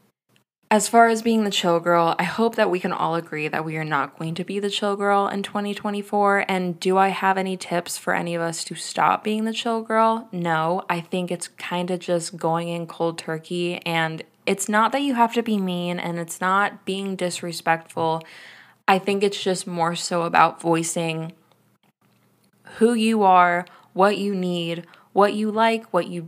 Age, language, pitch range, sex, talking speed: 20-39, English, 170-200 Hz, female, 195 wpm